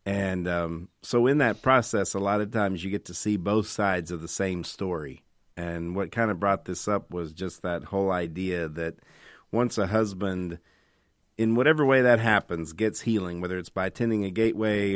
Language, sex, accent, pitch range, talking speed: English, male, American, 90-110 Hz, 195 wpm